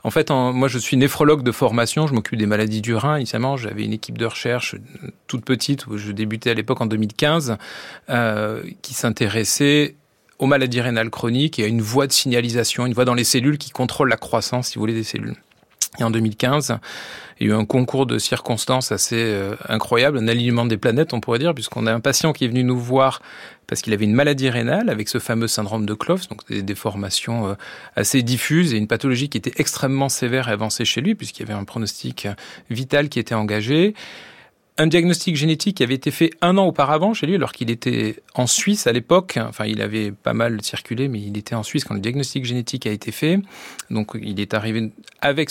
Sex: male